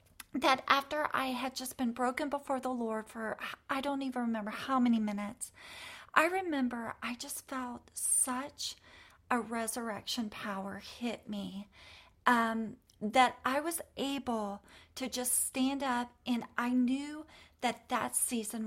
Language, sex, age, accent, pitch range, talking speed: English, female, 40-59, American, 225-270 Hz, 140 wpm